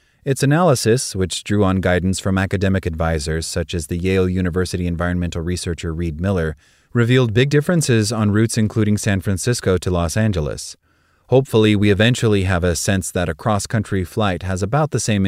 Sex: male